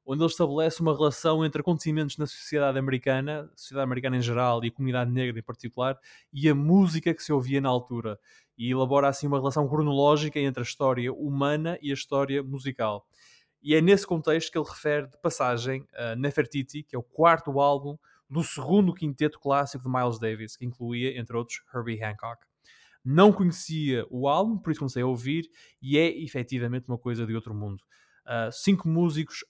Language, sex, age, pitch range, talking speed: Portuguese, male, 20-39, 125-150 Hz, 185 wpm